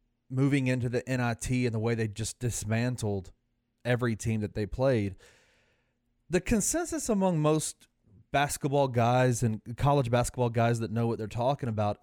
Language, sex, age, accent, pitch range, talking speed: English, male, 30-49, American, 115-135 Hz, 155 wpm